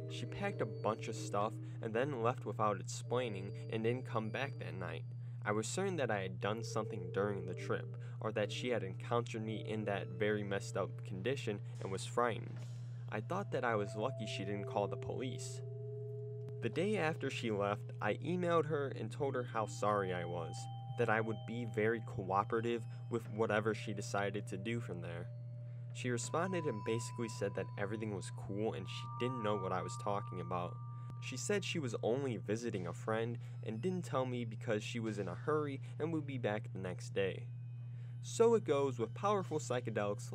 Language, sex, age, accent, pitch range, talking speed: English, male, 10-29, American, 110-125 Hz, 195 wpm